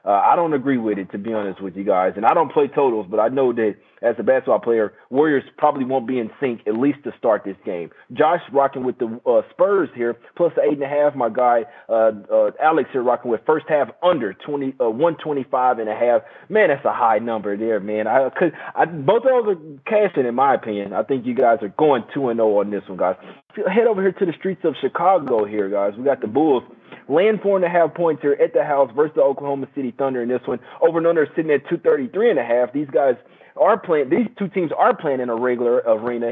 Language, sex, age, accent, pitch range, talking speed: English, male, 30-49, American, 115-165 Hz, 235 wpm